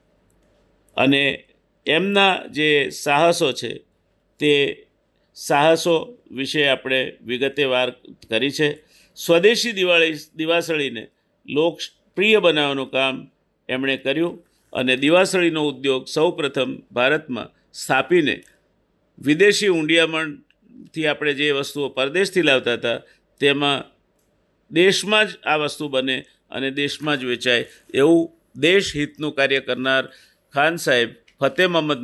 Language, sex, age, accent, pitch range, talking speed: Gujarati, male, 50-69, native, 140-190 Hz, 100 wpm